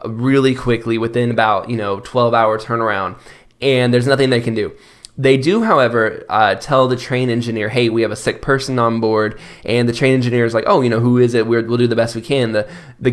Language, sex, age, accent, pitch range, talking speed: English, male, 20-39, American, 115-135 Hz, 240 wpm